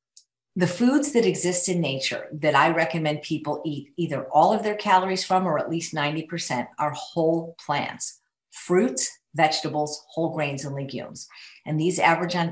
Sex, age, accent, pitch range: female, 50-69, American, 145-170 Hz